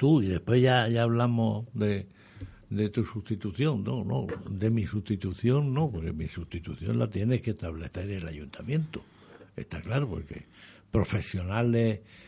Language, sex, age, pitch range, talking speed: Spanish, male, 60-79, 95-115 Hz, 140 wpm